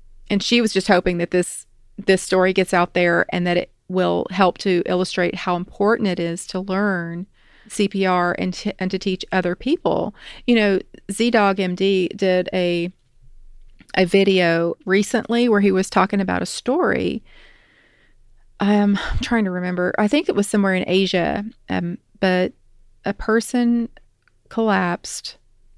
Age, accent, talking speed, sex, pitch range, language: 30-49, American, 155 wpm, female, 180-205 Hz, English